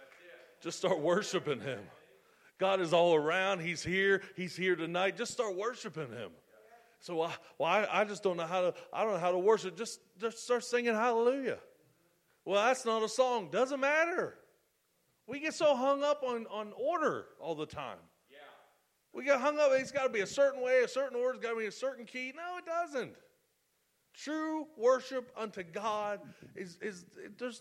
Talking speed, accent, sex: 190 wpm, American, male